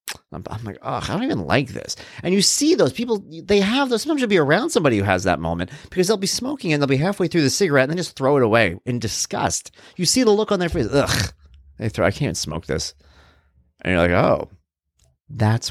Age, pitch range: 30-49, 95-155 Hz